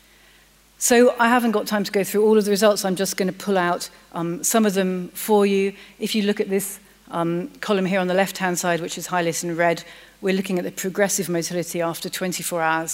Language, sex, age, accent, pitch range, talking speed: English, female, 40-59, British, 170-200 Hz, 230 wpm